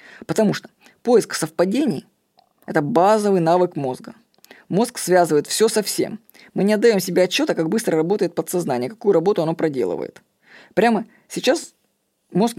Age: 20-39